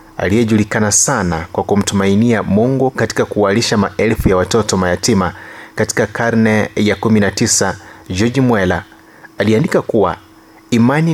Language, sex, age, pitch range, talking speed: Swahili, male, 30-49, 100-120 Hz, 110 wpm